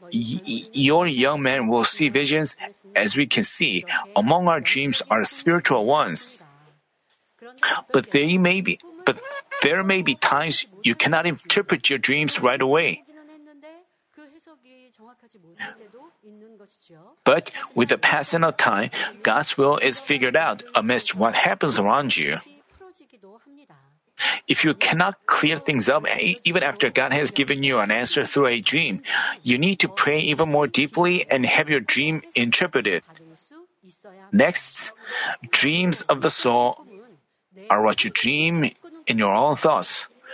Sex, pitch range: male, 145-220 Hz